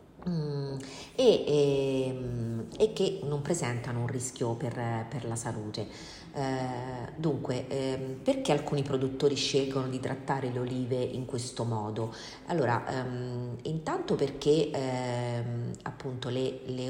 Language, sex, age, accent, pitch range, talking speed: Italian, female, 40-59, native, 120-145 Hz, 115 wpm